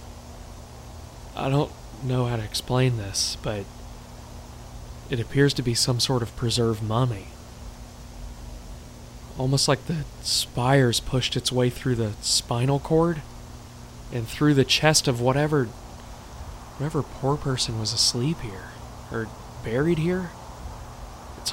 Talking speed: 125 wpm